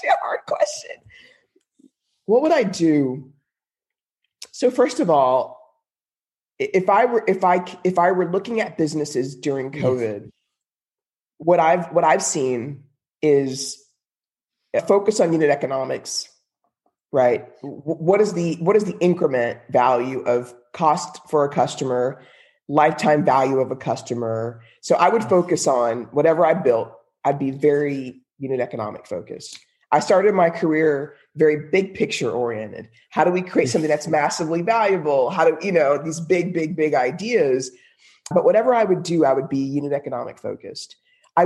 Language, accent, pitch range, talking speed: English, American, 135-190 Hz, 150 wpm